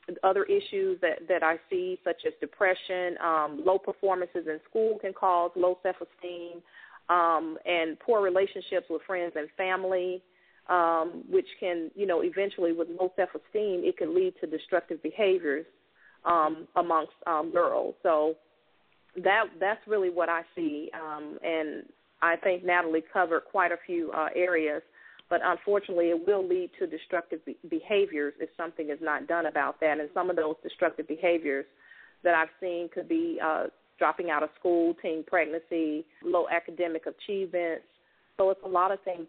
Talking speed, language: 160 wpm, English